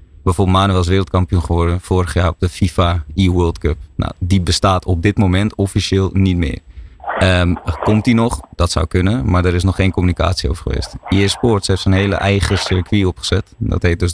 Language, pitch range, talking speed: Dutch, 85-95 Hz, 200 wpm